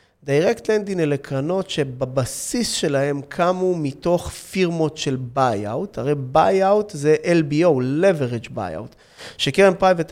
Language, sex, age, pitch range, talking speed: Hebrew, male, 30-49, 130-165 Hz, 115 wpm